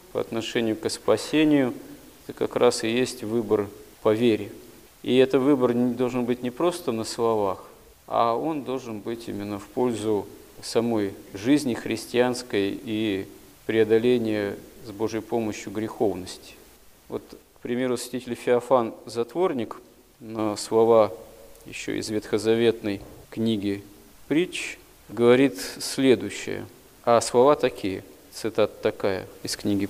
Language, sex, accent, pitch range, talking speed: Russian, male, native, 110-135 Hz, 120 wpm